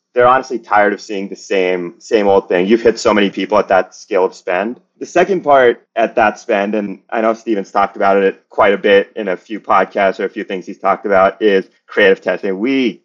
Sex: male